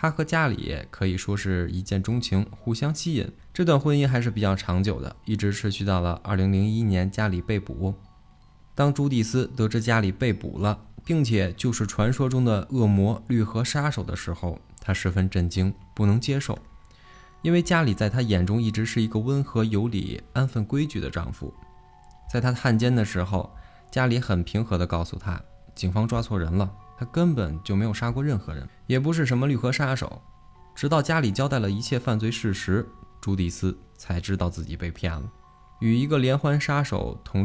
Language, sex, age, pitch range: Chinese, male, 20-39, 95-125 Hz